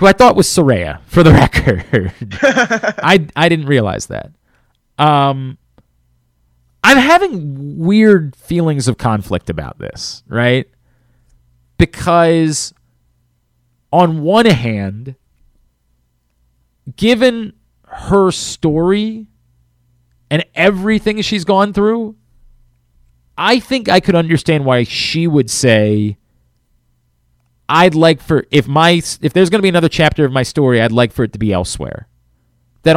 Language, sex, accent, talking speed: English, male, American, 120 wpm